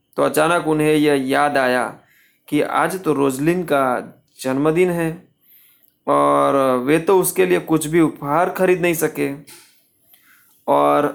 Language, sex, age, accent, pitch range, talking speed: Hindi, male, 20-39, native, 145-175 Hz, 140 wpm